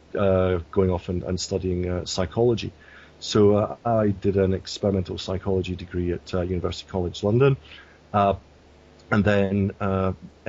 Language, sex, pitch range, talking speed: English, male, 90-100 Hz, 145 wpm